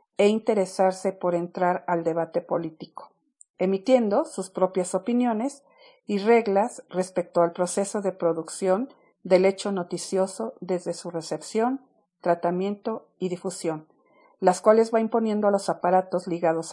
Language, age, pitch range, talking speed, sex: Spanish, 50-69, 180-230 Hz, 125 wpm, female